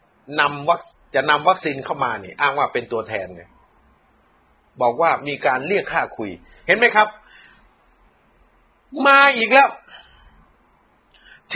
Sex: male